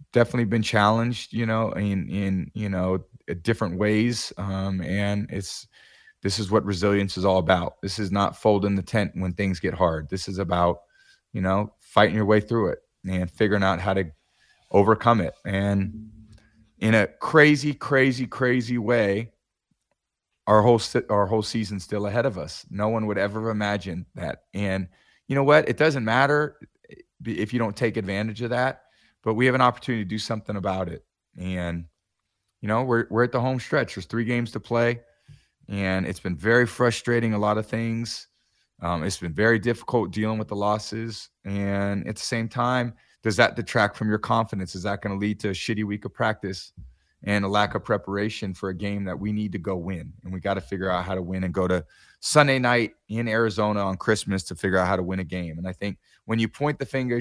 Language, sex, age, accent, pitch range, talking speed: English, male, 30-49, American, 95-115 Hz, 205 wpm